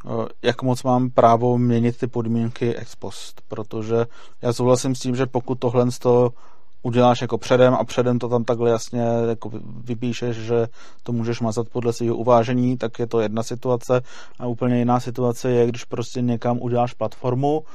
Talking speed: 170 wpm